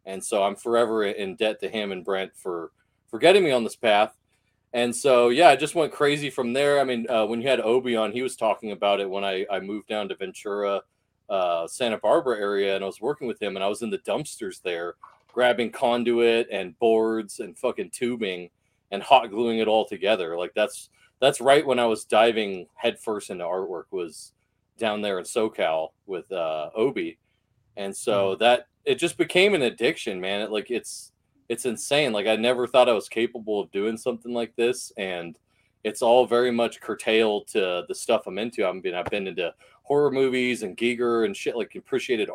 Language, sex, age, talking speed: English, male, 40-59, 205 wpm